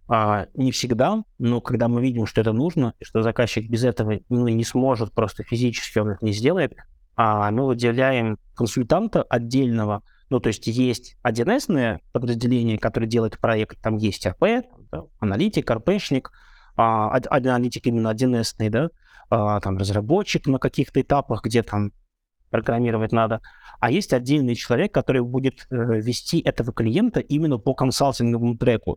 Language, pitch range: Russian, 110-135 Hz